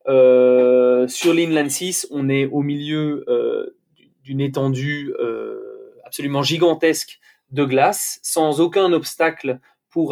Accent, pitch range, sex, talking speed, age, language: French, 125-150 Hz, male, 120 wpm, 20-39, French